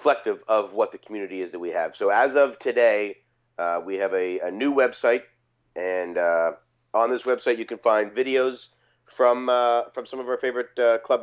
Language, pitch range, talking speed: English, 115-155 Hz, 205 wpm